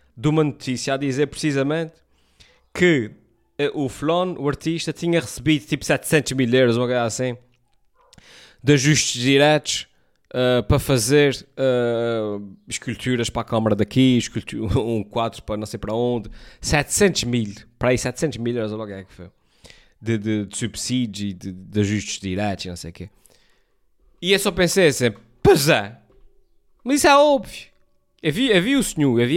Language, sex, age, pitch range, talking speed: Portuguese, male, 20-39, 110-160 Hz, 160 wpm